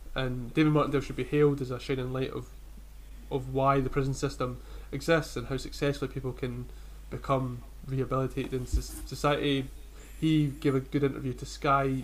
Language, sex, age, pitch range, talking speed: English, male, 20-39, 125-140 Hz, 165 wpm